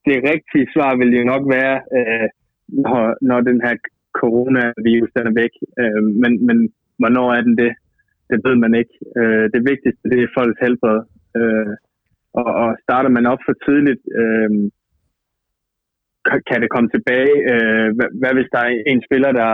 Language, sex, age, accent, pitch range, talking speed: Danish, male, 20-39, native, 110-125 Hz, 145 wpm